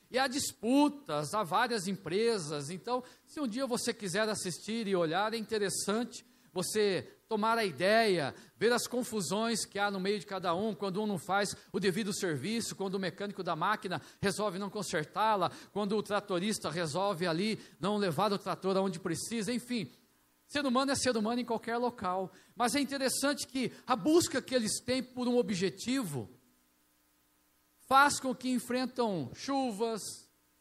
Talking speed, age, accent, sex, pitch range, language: 165 wpm, 50-69, Brazilian, male, 155-225 Hz, Portuguese